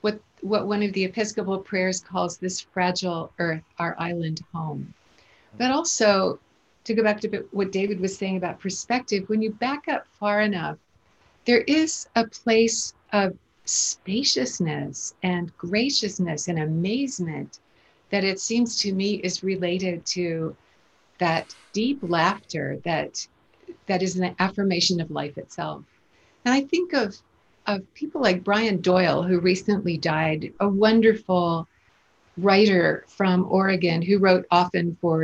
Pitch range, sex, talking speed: 175-220 Hz, female, 140 wpm